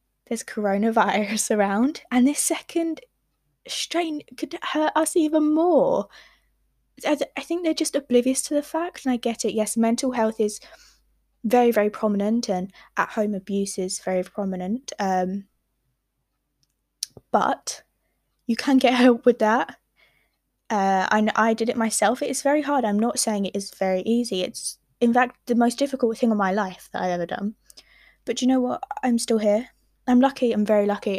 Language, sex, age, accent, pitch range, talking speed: English, female, 10-29, British, 205-260 Hz, 175 wpm